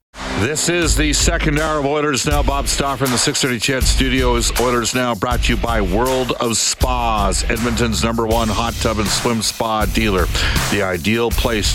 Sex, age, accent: male, 50-69, American